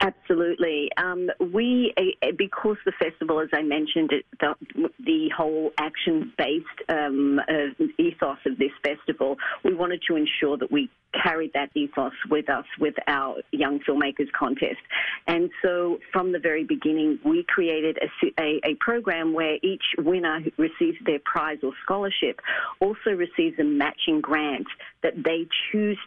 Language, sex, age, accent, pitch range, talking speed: English, female, 40-59, Australian, 150-240 Hz, 155 wpm